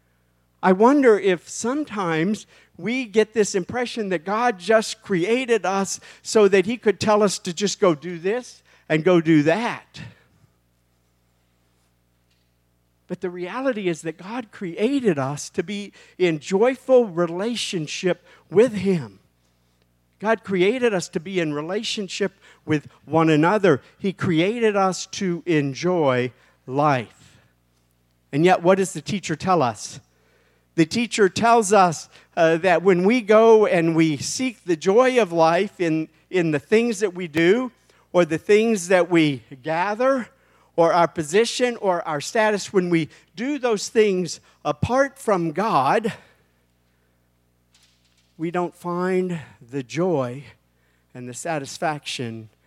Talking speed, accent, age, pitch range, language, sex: 135 wpm, American, 50-69, 125-200 Hz, English, male